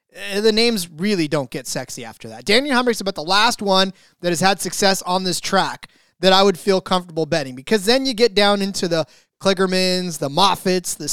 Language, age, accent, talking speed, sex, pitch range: English, 30-49, American, 205 wpm, male, 165-215 Hz